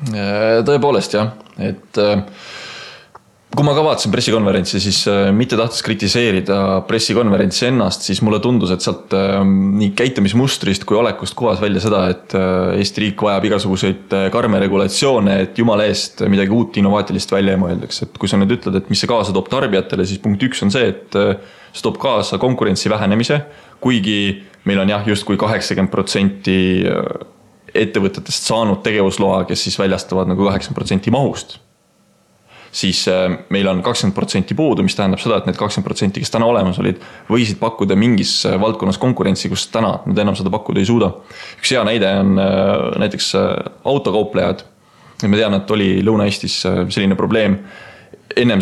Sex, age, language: male, 20-39, English